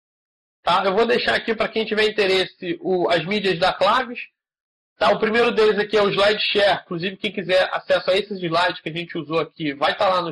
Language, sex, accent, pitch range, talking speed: Portuguese, male, Brazilian, 175-220 Hz, 225 wpm